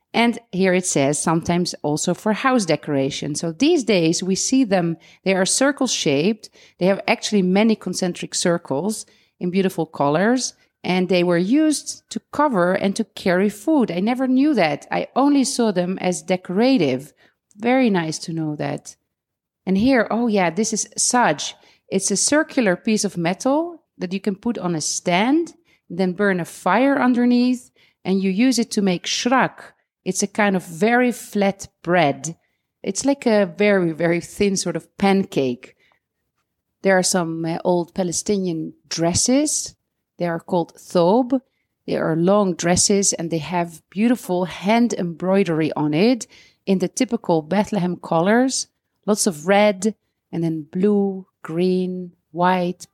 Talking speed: 155 wpm